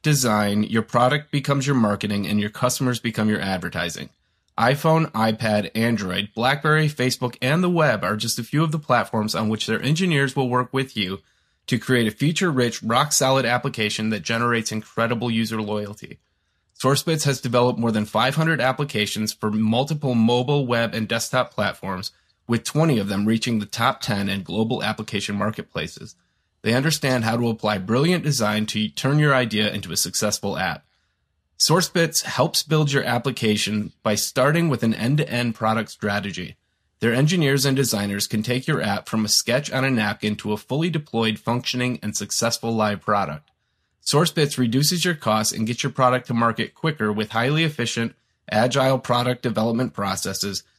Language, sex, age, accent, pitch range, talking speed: English, male, 30-49, American, 105-130 Hz, 170 wpm